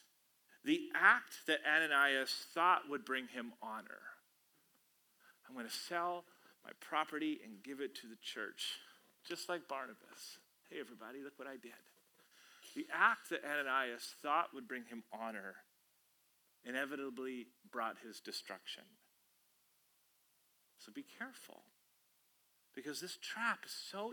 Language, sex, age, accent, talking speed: English, male, 30-49, American, 125 wpm